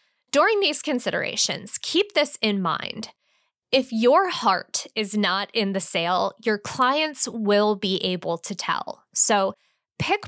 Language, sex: English, female